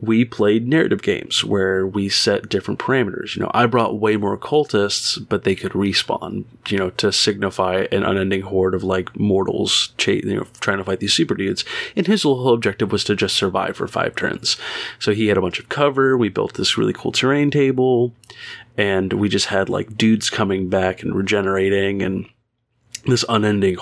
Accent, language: American, English